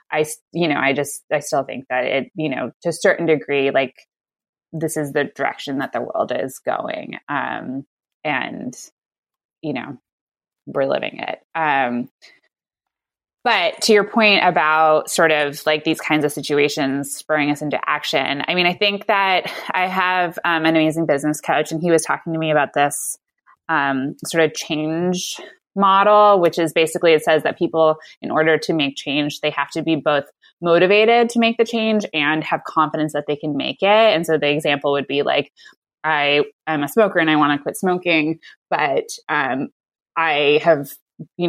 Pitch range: 150-185 Hz